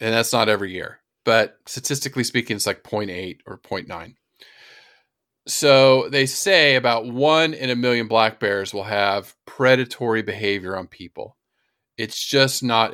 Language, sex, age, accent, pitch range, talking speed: English, male, 40-59, American, 105-140 Hz, 150 wpm